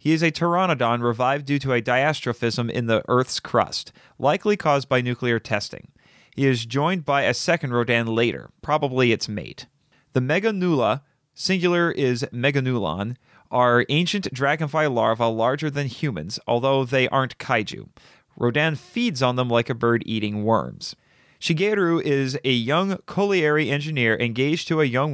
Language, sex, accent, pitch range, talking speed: English, male, American, 120-155 Hz, 155 wpm